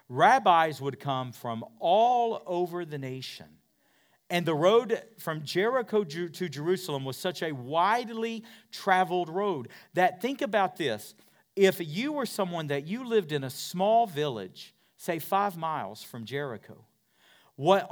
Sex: male